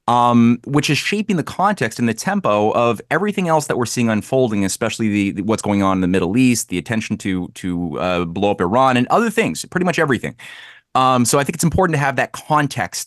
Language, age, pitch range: English, 30-49, 100-130 Hz